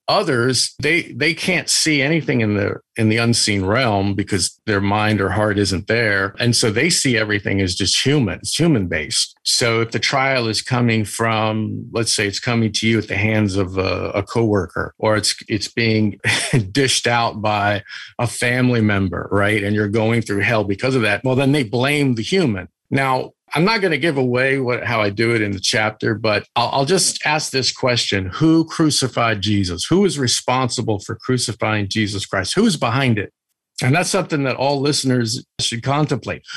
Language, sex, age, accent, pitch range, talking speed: English, male, 50-69, American, 105-140 Hz, 195 wpm